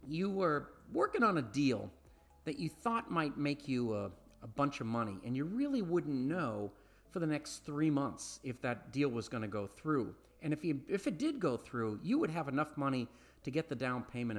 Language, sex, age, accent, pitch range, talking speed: English, male, 40-59, American, 120-180 Hz, 220 wpm